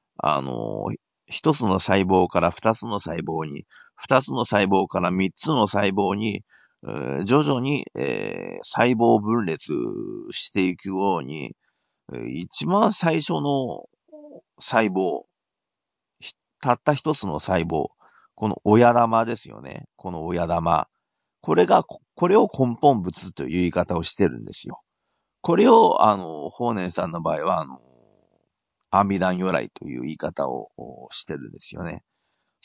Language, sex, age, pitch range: Japanese, male, 40-59, 95-140 Hz